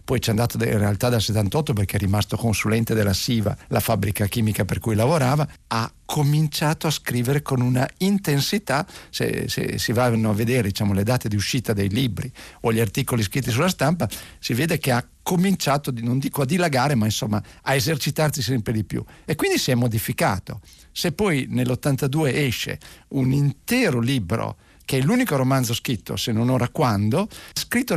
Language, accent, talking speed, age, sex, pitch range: Italian, native, 180 wpm, 50-69, male, 110-140 Hz